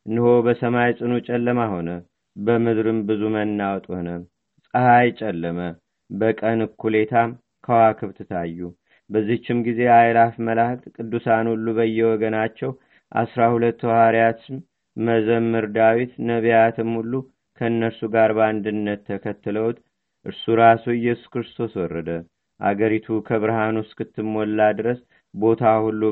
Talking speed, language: 100 wpm, Amharic